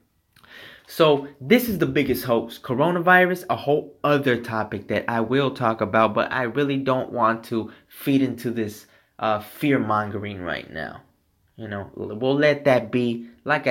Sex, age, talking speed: male, 20-39, 160 wpm